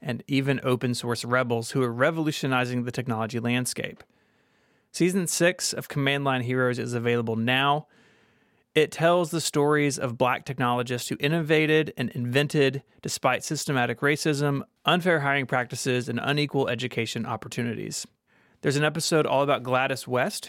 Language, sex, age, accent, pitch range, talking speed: English, male, 30-49, American, 125-150 Hz, 140 wpm